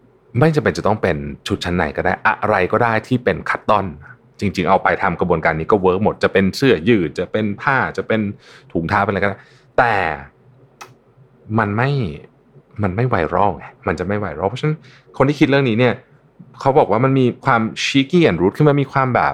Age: 20-39